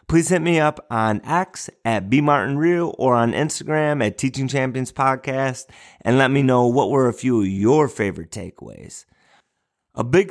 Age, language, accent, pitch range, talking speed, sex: 30-49, English, American, 110-145 Hz, 170 wpm, male